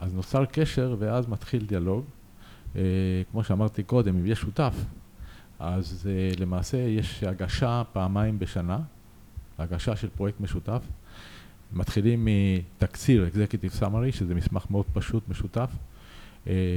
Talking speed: 120 wpm